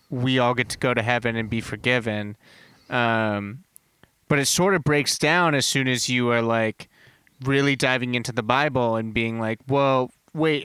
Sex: male